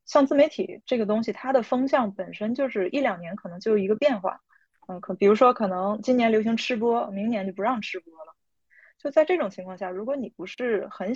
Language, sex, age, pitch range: Chinese, female, 20-39, 190-250 Hz